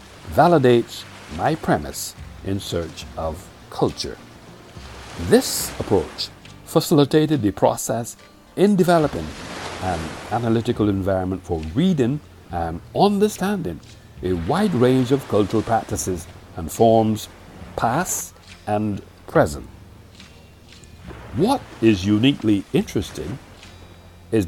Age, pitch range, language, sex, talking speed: 60-79, 85-125 Hz, English, male, 90 wpm